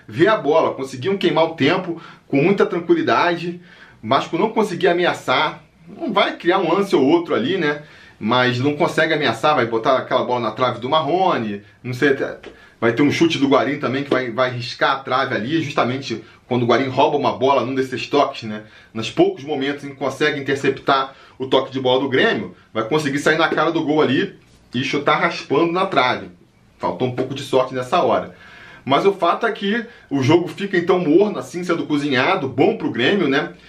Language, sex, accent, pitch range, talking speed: Portuguese, male, Brazilian, 130-175 Hz, 200 wpm